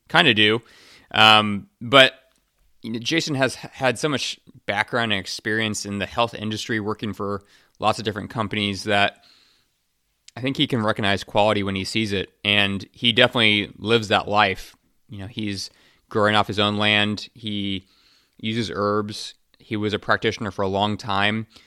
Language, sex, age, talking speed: English, male, 20-39, 165 wpm